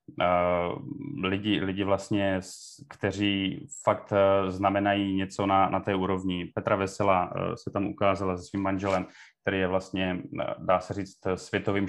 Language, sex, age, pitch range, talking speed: Czech, male, 30-49, 95-110 Hz, 130 wpm